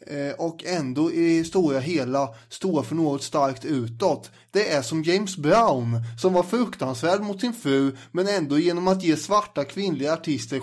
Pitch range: 140-180 Hz